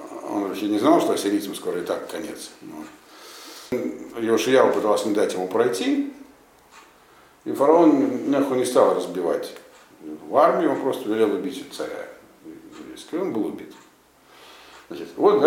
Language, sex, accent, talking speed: Russian, male, native, 130 wpm